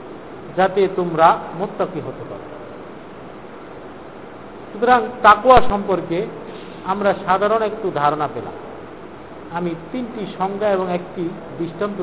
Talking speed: 95 wpm